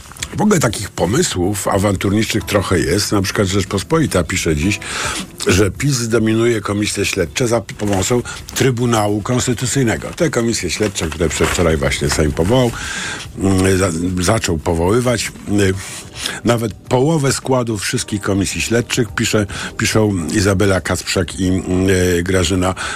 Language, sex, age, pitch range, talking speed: Polish, male, 50-69, 90-120 Hz, 120 wpm